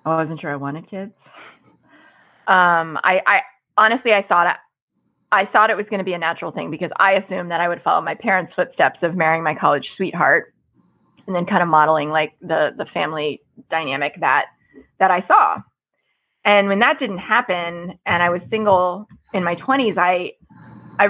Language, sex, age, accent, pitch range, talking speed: English, female, 20-39, American, 165-205 Hz, 190 wpm